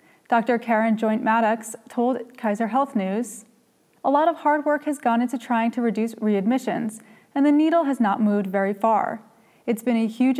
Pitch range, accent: 215-265 Hz, American